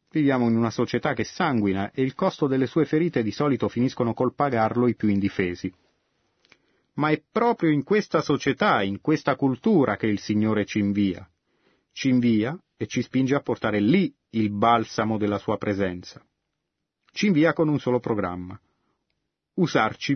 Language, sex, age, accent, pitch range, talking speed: Italian, male, 30-49, native, 100-130 Hz, 160 wpm